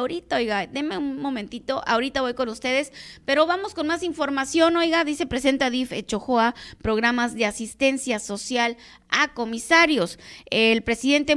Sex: female